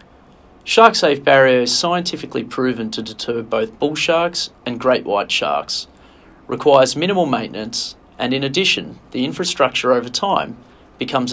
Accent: Australian